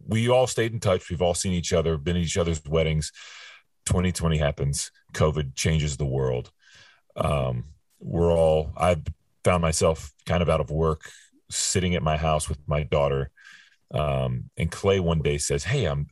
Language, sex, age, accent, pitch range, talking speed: English, male, 40-59, American, 75-90 Hz, 175 wpm